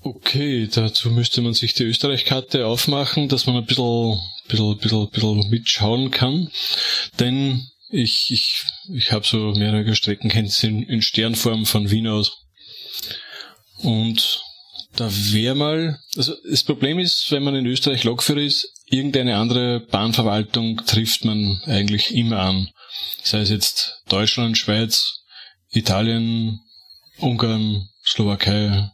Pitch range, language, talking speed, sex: 105-130 Hz, German, 125 wpm, male